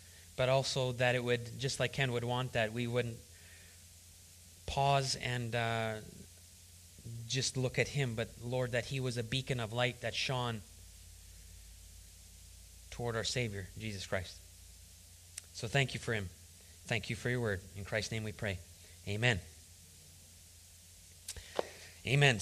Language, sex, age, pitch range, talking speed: English, male, 30-49, 90-145 Hz, 140 wpm